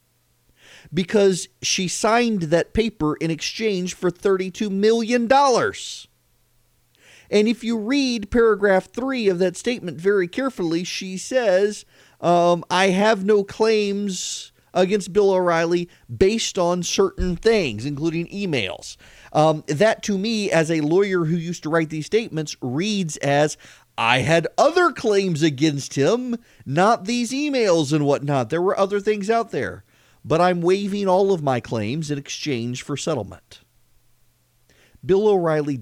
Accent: American